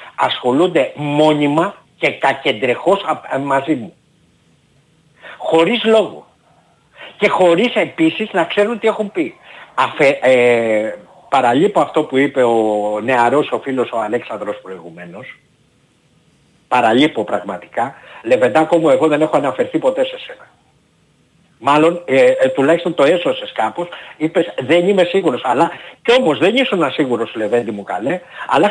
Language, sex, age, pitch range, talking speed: Greek, male, 50-69, 135-205 Hz, 130 wpm